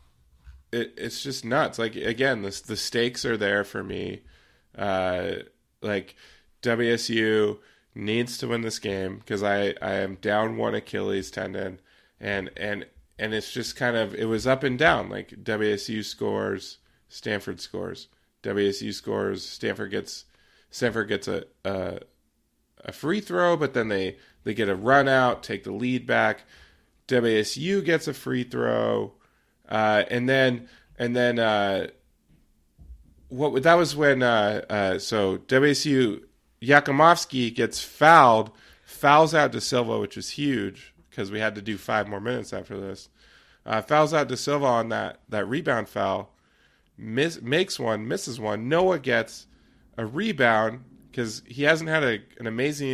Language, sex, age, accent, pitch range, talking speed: English, male, 20-39, American, 105-135 Hz, 150 wpm